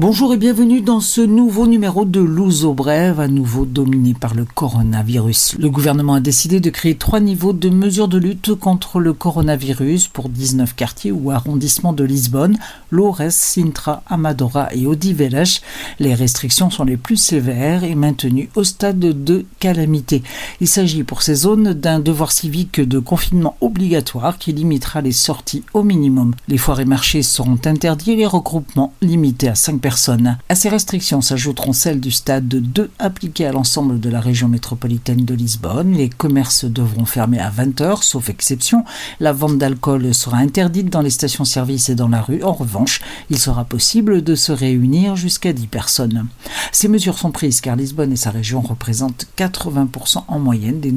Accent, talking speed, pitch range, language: French, 175 wpm, 130-180 Hz, Portuguese